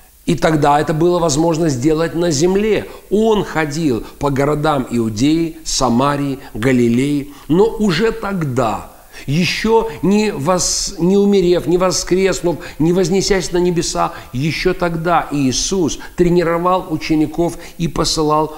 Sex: male